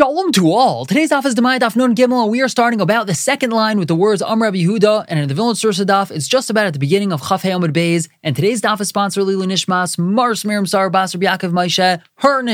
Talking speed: 245 wpm